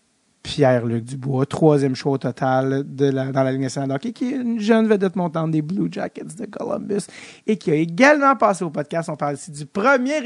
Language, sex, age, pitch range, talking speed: English, male, 30-49, 145-210 Hz, 210 wpm